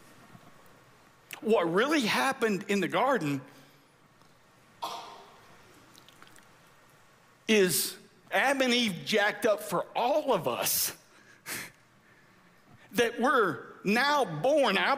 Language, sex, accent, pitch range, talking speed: English, male, American, 160-230 Hz, 85 wpm